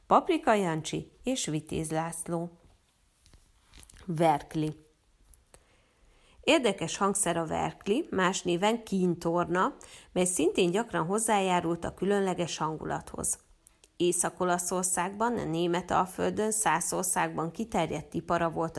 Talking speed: 85 wpm